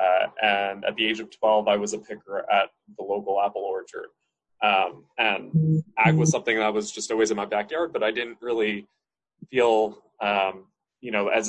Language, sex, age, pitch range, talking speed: English, male, 20-39, 105-120 Hz, 195 wpm